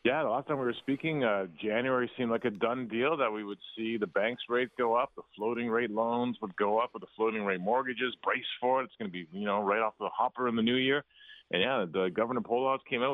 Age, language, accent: 40-59, English, American